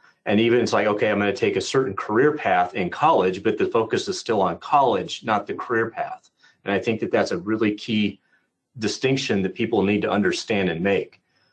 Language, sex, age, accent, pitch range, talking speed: English, male, 30-49, American, 105-130 Hz, 215 wpm